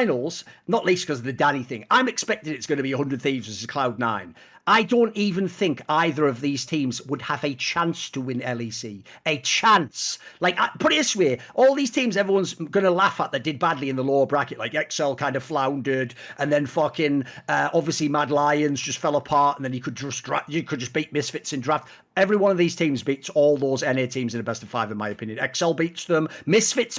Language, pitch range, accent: English, 140-230 Hz, British